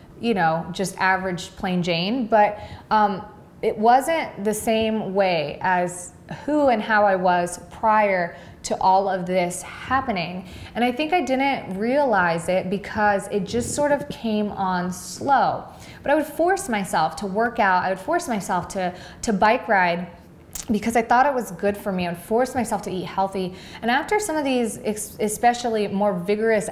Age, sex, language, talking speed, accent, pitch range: 20-39, female, English, 175 wpm, American, 180-225 Hz